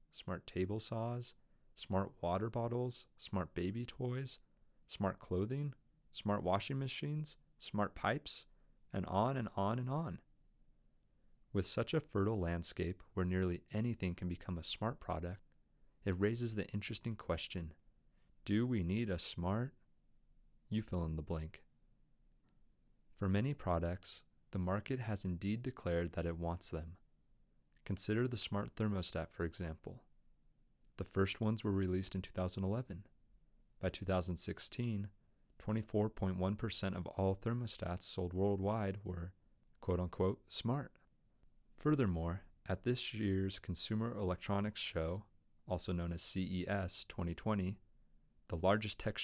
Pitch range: 90-110 Hz